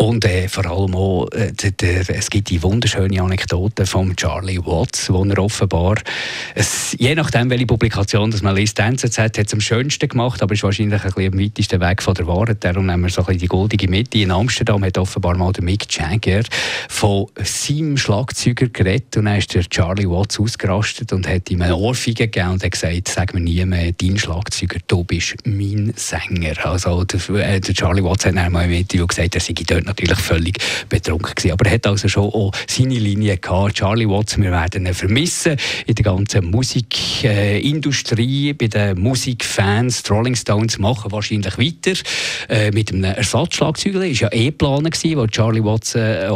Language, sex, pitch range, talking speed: German, male, 95-115 Hz, 185 wpm